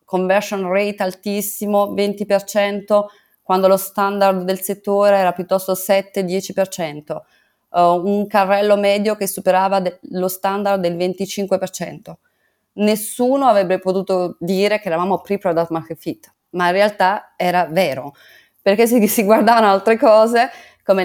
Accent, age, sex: native, 20-39, female